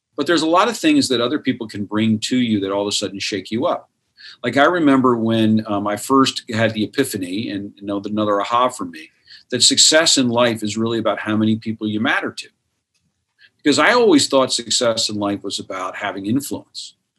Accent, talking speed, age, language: American, 215 wpm, 40-59, English